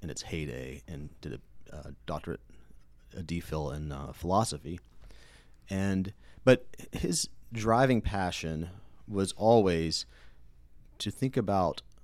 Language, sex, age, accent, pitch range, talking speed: English, male, 30-49, American, 70-105 Hz, 110 wpm